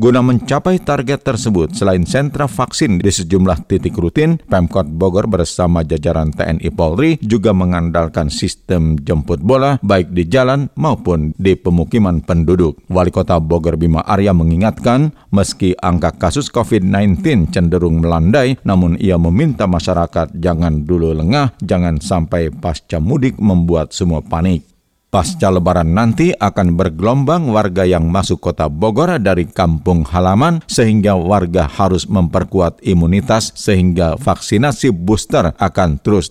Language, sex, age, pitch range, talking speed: Indonesian, male, 50-69, 85-110 Hz, 130 wpm